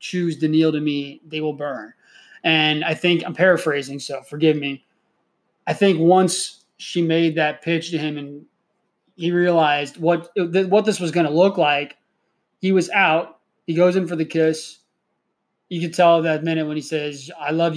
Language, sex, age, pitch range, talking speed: English, male, 20-39, 155-180 Hz, 180 wpm